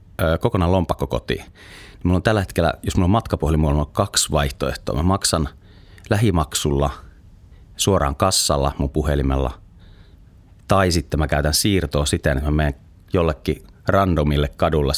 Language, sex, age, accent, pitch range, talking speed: Finnish, male, 30-49, native, 75-95 Hz, 130 wpm